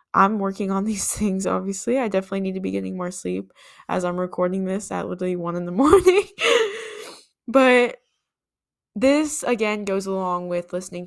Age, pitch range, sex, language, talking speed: 10-29, 180-215 Hz, female, English, 170 wpm